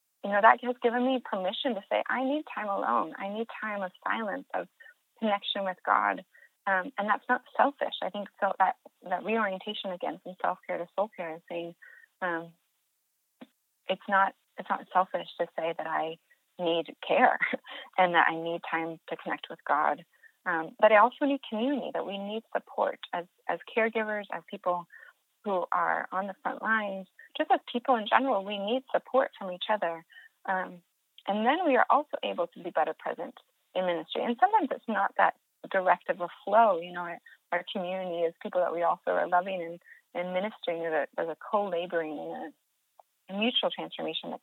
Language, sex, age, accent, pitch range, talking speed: English, female, 30-49, American, 175-230 Hz, 190 wpm